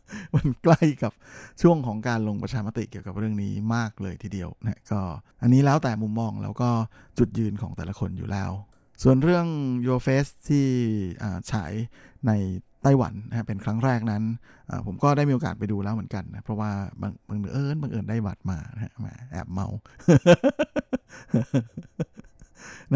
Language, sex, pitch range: Thai, male, 105-125 Hz